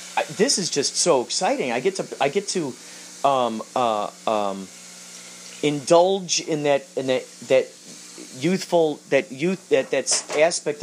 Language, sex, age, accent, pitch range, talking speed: English, male, 30-49, American, 100-155 Hz, 150 wpm